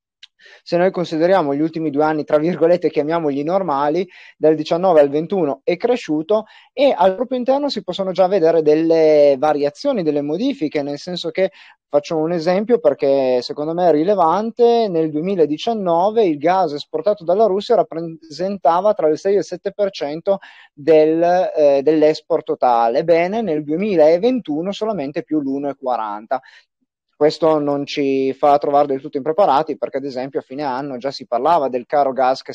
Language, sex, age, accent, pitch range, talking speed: Italian, male, 30-49, native, 145-195 Hz, 155 wpm